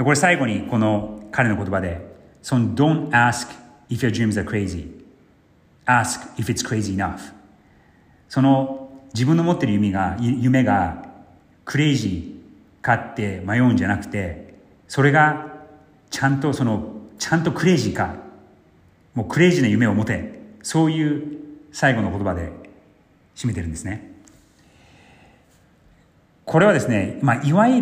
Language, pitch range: Japanese, 100-150 Hz